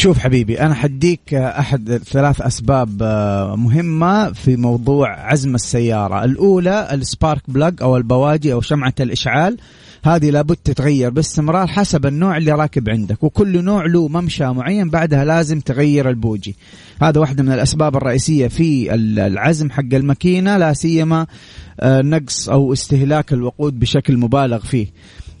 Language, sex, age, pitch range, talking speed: Arabic, male, 30-49, 125-155 Hz, 130 wpm